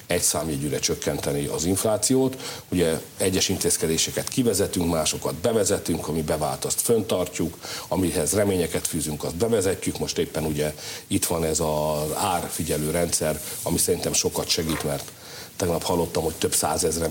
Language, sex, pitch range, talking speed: Hungarian, male, 80-100 Hz, 135 wpm